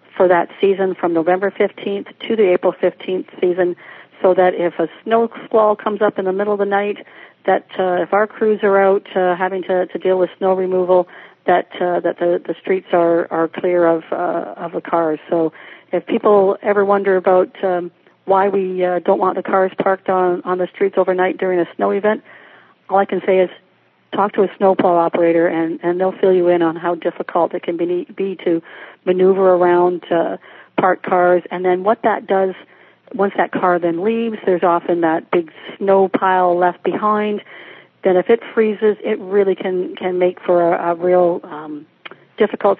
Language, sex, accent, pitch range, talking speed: English, female, American, 175-195 Hz, 195 wpm